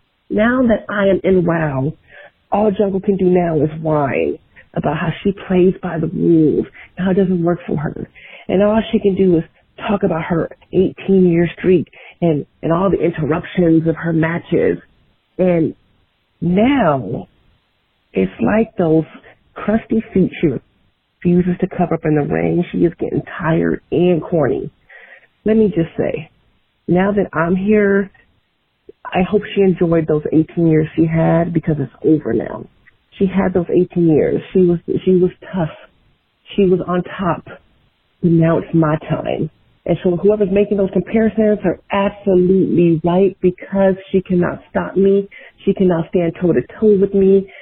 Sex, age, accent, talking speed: female, 40-59, American, 160 wpm